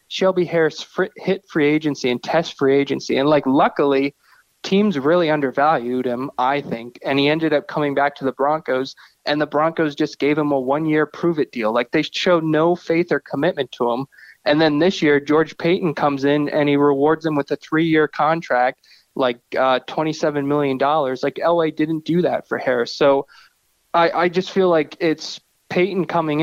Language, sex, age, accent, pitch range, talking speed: English, male, 20-39, American, 140-165 Hz, 190 wpm